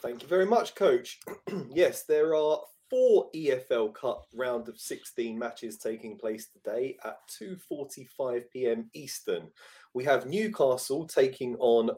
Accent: British